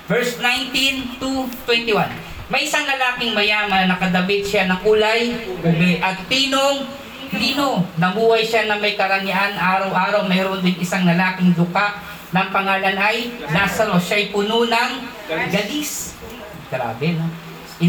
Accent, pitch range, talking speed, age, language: native, 185-230 Hz, 115 wpm, 40-59, Filipino